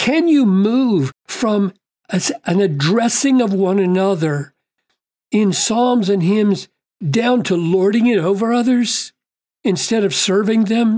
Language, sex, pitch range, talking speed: English, male, 185-230 Hz, 125 wpm